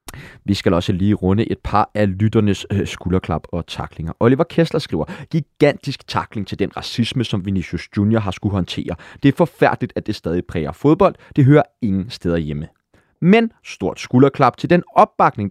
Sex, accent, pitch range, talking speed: male, native, 105-145 Hz, 180 wpm